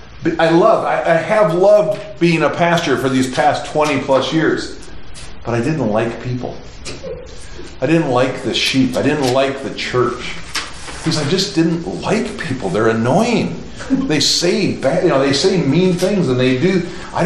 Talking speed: 185 wpm